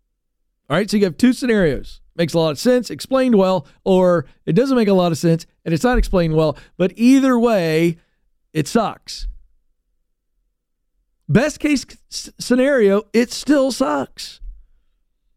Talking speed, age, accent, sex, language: 150 wpm, 40-59, American, male, English